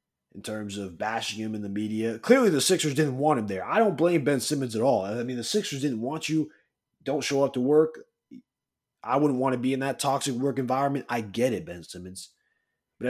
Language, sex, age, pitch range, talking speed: English, male, 20-39, 110-150 Hz, 230 wpm